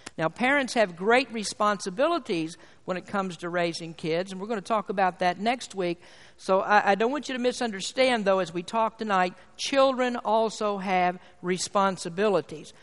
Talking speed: 175 wpm